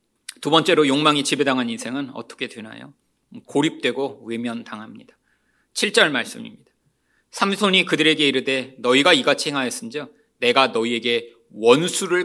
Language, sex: Korean, male